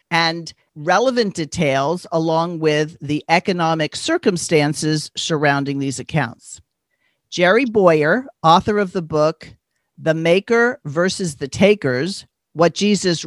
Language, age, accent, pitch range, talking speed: English, 50-69, American, 155-205 Hz, 110 wpm